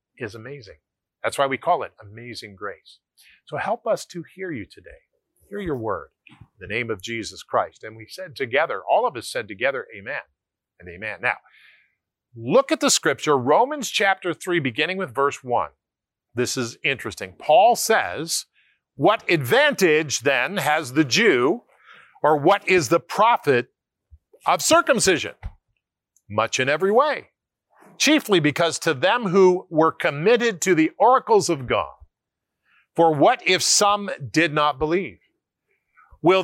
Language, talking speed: English, 150 wpm